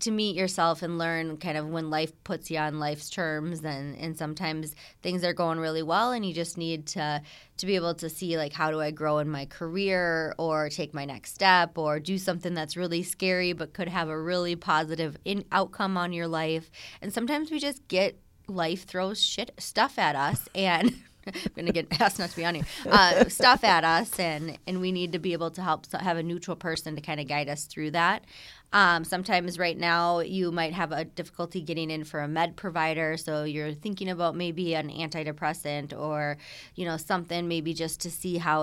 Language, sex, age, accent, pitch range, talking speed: English, female, 20-39, American, 150-175 Hz, 215 wpm